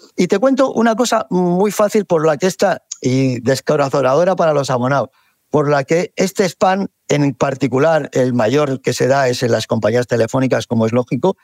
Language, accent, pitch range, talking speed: Spanish, Spanish, 135-195 Hz, 190 wpm